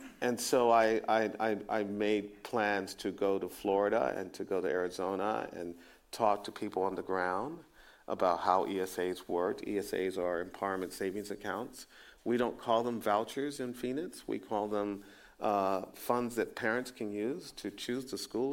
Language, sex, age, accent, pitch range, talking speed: English, male, 50-69, American, 90-105 Hz, 170 wpm